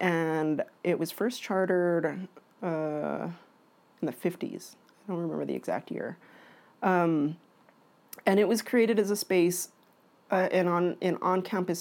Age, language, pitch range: 30-49, English, 150-180 Hz